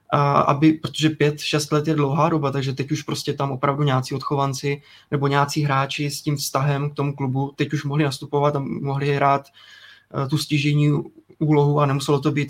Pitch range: 140-155 Hz